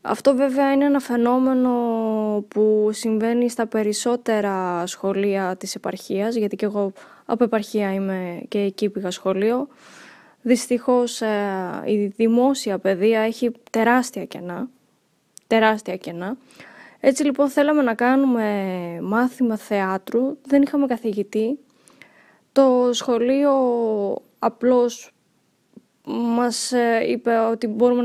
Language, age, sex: Greek, 10-29, female